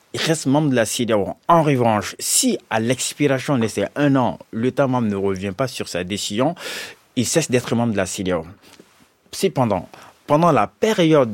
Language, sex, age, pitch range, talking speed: French, male, 30-49, 110-145 Hz, 180 wpm